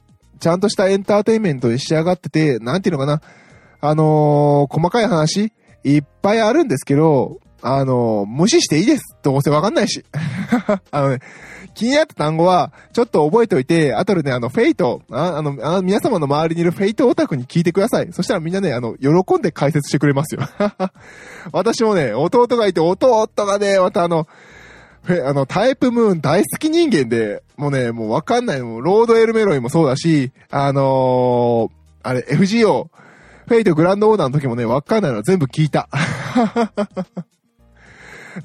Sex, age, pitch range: male, 20-39, 140-200 Hz